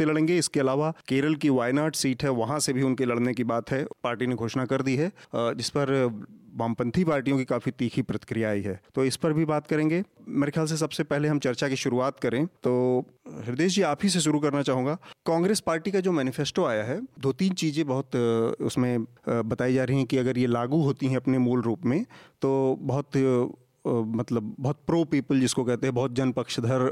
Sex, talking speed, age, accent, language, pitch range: male, 70 wpm, 40-59, native, Hindi, 115-145 Hz